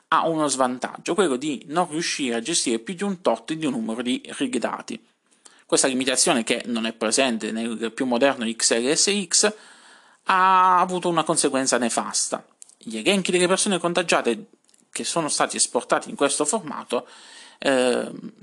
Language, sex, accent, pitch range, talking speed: Italian, male, native, 125-185 Hz, 155 wpm